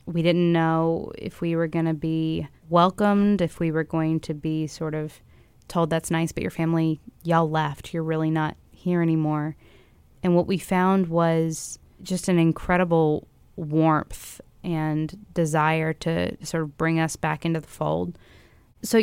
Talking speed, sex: 165 wpm, female